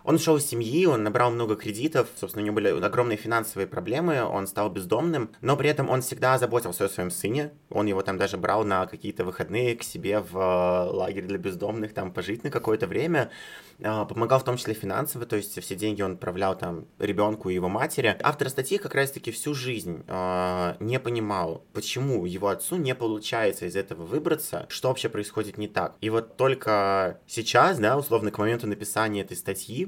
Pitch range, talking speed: 100-125 Hz, 190 wpm